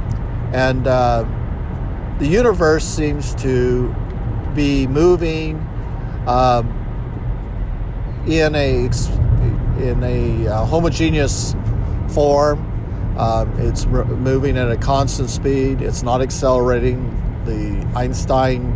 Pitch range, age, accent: 110-130 Hz, 50-69, American